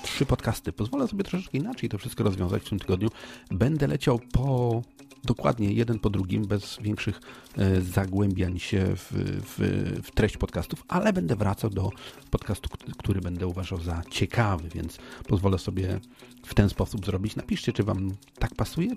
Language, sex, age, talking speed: Polish, male, 40-59, 155 wpm